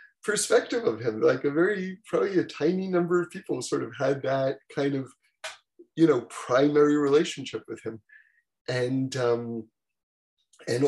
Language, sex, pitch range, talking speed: English, male, 130-170 Hz, 150 wpm